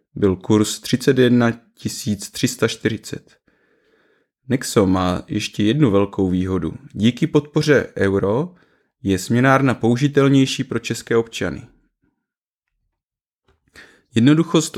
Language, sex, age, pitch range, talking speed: Czech, male, 20-39, 105-135 Hz, 80 wpm